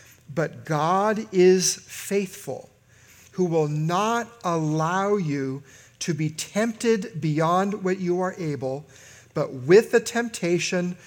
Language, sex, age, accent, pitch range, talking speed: English, male, 50-69, American, 130-180 Hz, 115 wpm